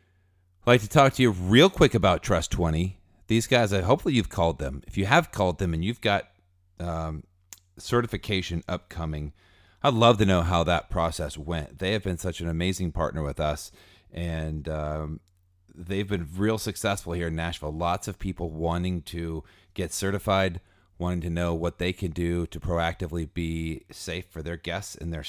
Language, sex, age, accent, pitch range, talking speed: English, male, 40-59, American, 85-105 Hz, 185 wpm